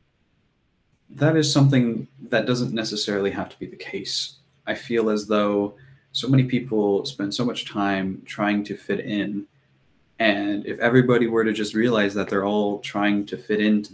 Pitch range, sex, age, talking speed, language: 100-130 Hz, male, 20-39, 170 wpm, English